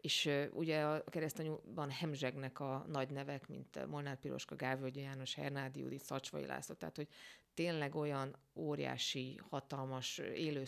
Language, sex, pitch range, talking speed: Hungarian, female, 140-165 Hz, 140 wpm